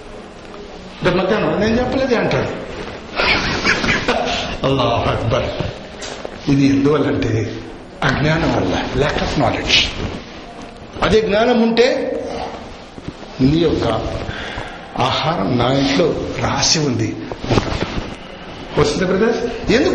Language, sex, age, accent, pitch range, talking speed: Telugu, male, 60-79, native, 155-240 Hz, 70 wpm